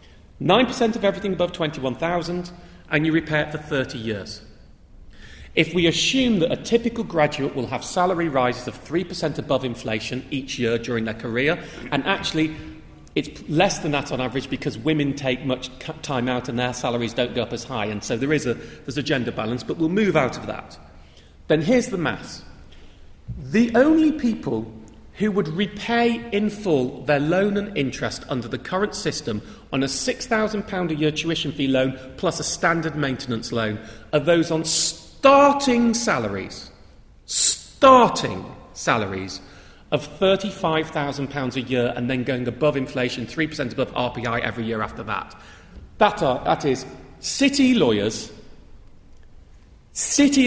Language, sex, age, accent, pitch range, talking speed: English, male, 40-59, British, 125-175 Hz, 155 wpm